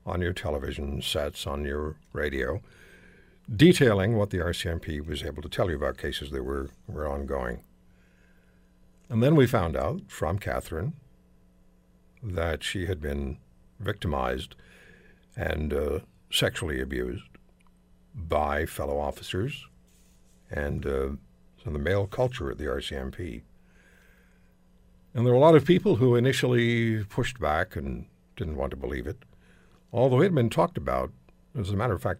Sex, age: male, 60-79